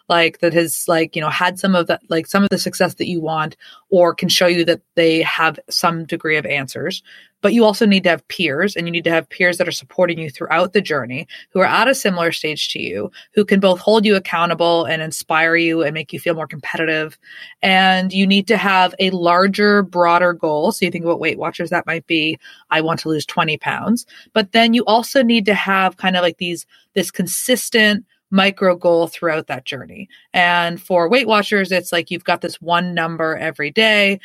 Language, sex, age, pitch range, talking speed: English, female, 20-39, 165-200 Hz, 225 wpm